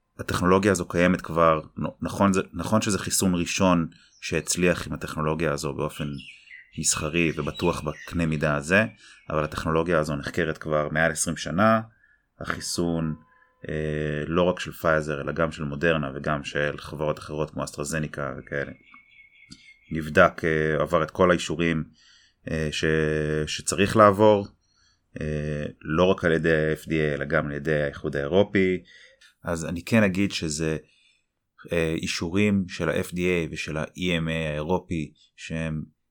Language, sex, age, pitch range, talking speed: Hebrew, male, 30-49, 75-90 Hz, 130 wpm